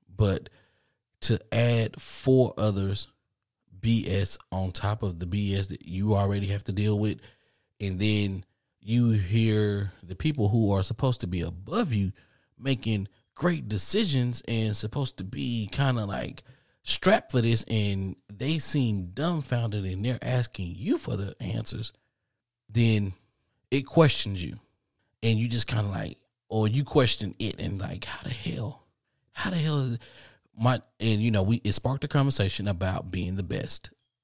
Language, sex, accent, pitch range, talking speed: English, male, American, 100-130 Hz, 160 wpm